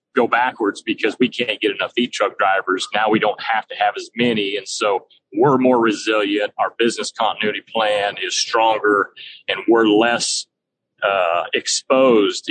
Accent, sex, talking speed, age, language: American, male, 165 wpm, 30-49, English